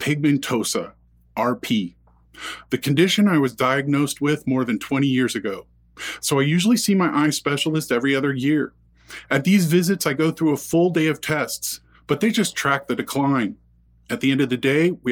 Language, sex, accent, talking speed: English, male, American, 185 wpm